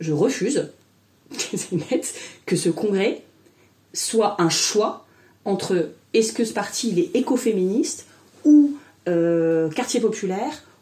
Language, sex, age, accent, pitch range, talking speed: French, female, 30-49, French, 170-250 Hz, 105 wpm